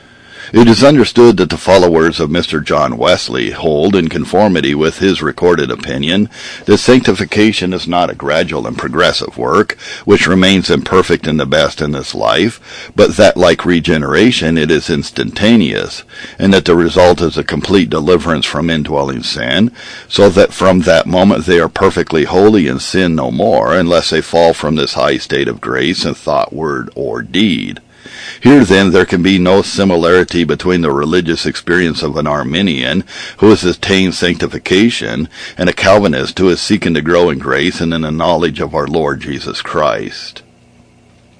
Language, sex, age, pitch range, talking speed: English, male, 50-69, 85-105 Hz, 170 wpm